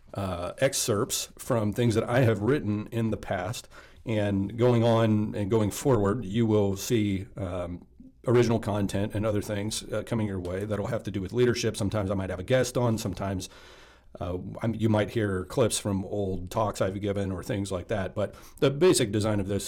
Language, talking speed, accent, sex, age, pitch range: English, 200 wpm, American, male, 40-59, 95-115 Hz